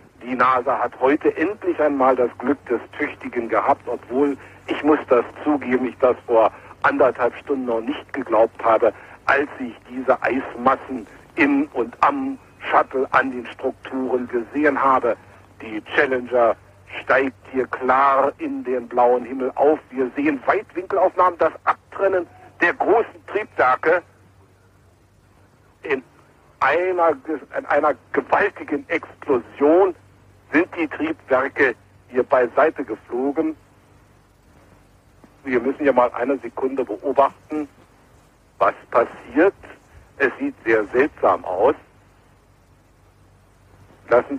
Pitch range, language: 100-135 Hz, German